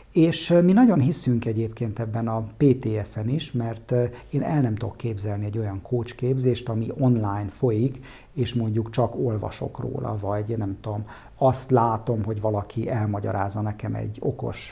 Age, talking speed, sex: 50-69, 155 wpm, male